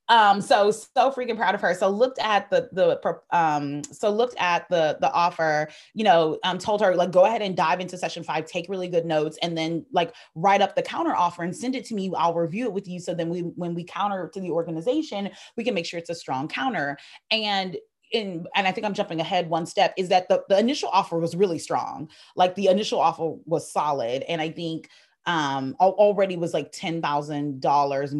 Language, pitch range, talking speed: English, 150-190 Hz, 220 wpm